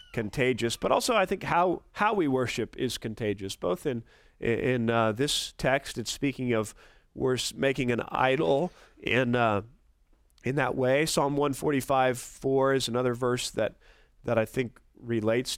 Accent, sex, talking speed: American, male, 150 wpm